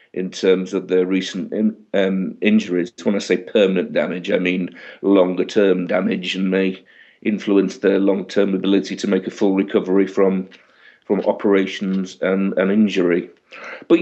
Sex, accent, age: male, British, 50-69